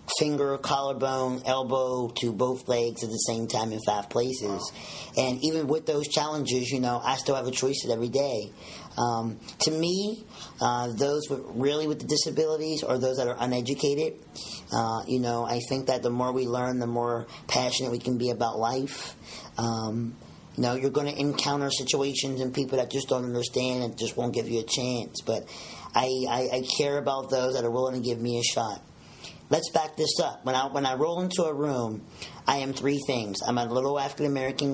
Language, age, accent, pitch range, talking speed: English, 40-59, American, 120-140 Hz, 200 wpm